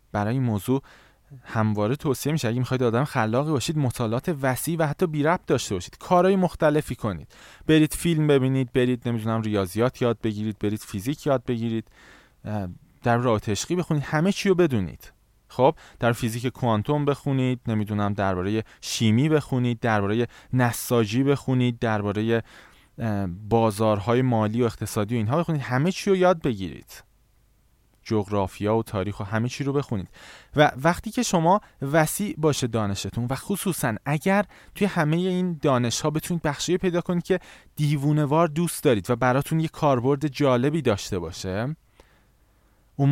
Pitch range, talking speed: 110-160 Hz, 140 wpm